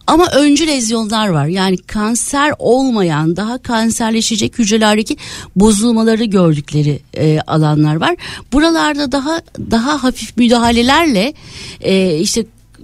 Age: 60-79